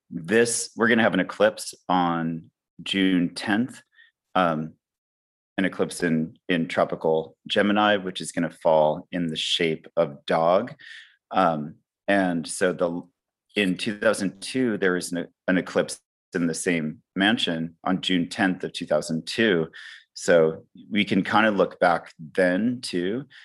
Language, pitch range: English, 80-90 Hz